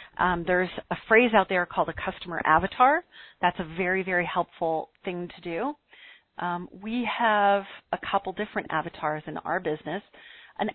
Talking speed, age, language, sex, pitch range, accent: 160 wpm, 40-59, English, female, 170-210 Hz, American